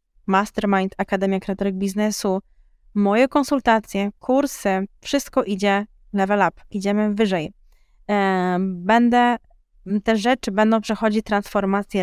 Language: Polish